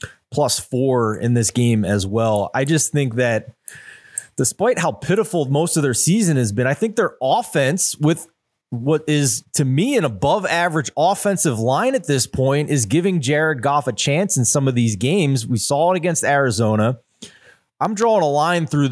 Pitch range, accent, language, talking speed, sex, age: 115-150 Hz, American, English, 185 wpm, male, 30-49